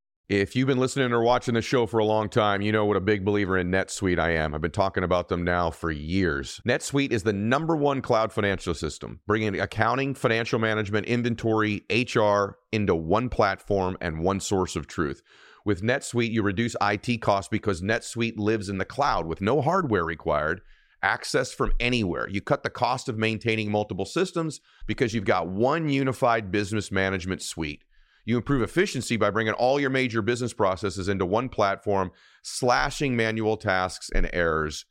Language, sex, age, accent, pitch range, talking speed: English, male, 40-59, American, 95-120 Hz, 180 wpm